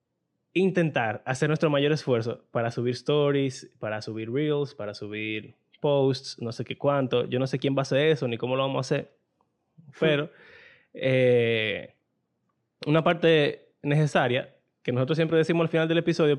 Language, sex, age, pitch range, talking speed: Spanish, male, 20-39, 125-160 Hz, 165 wpm